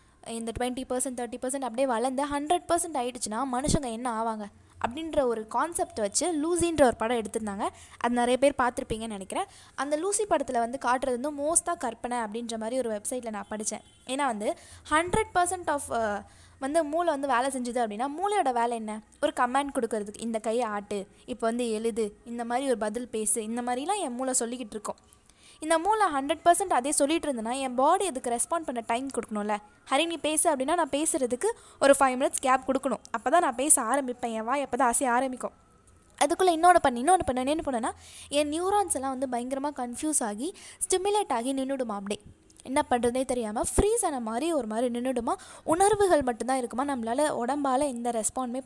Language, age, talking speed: Tamil, 20-39, 170 wpm